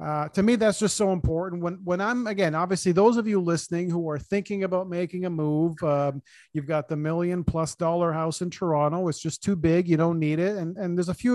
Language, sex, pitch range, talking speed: English, male, 155-185 Hz, 245 wpm